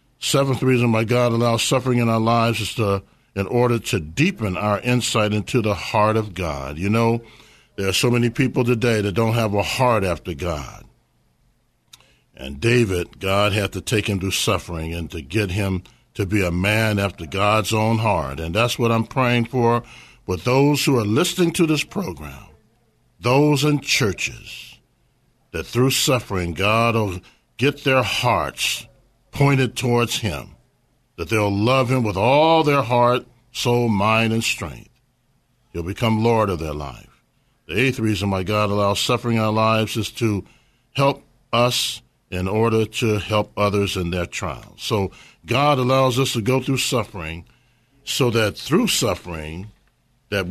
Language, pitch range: English, 100-125 Hz